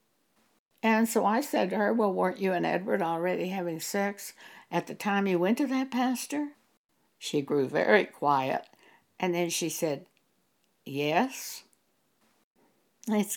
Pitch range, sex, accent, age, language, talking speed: 175-235 Hz, female, American, 60-79, English, 145 wpm